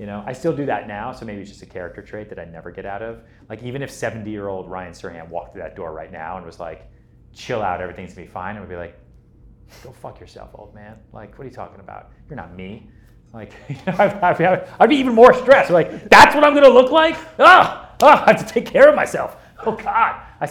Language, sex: English, male